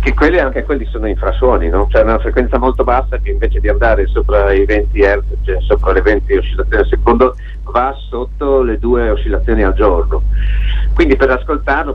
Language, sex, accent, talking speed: Italian, male, native, 185 wpm